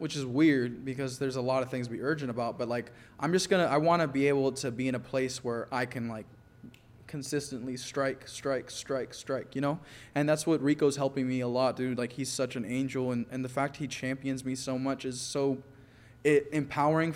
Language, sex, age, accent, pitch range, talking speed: English, male, 20-39, American, 120-140 Hz, 225 wpm